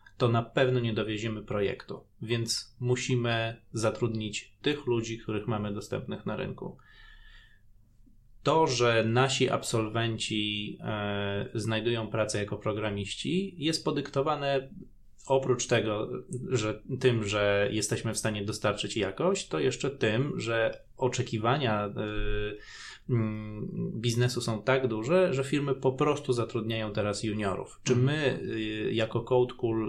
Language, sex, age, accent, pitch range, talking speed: Polish, male, 20-39, native, 110-125 Hz, 110 wpm